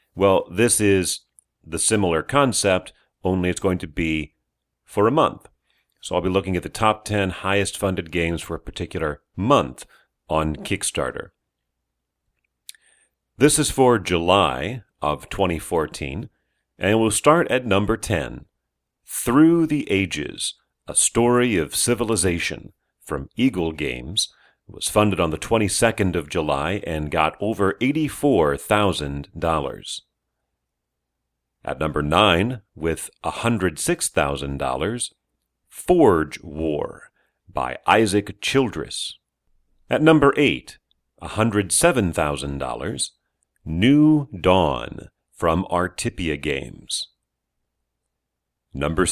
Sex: male